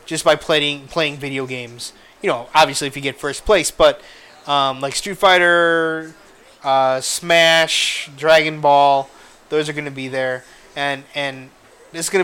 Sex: male